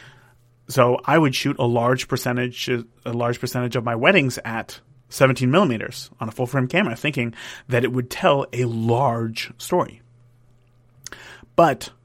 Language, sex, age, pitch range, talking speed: English, male, 30-49, 120-135 Hz, 145 wpm